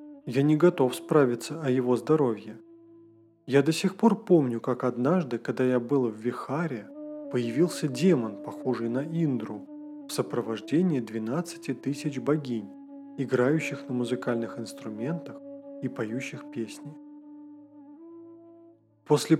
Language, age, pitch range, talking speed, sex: Russian, 20-39, 125-180 Hz, 115 wpm, male